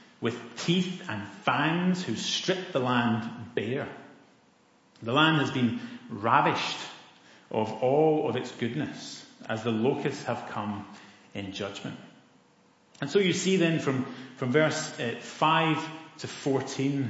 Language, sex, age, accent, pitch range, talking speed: English, male, 30-49, British, 120-175 Hz, 135 wpm